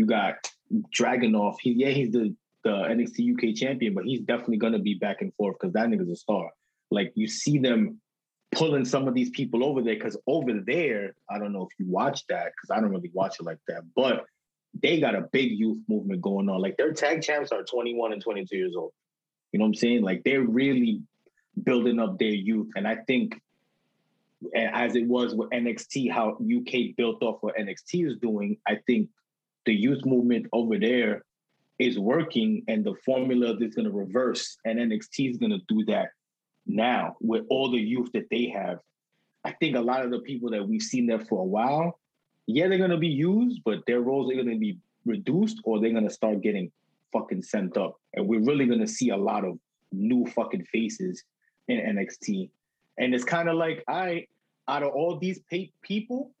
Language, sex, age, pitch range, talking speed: English, male, 20-39, 115-190 Hz, 205 wpm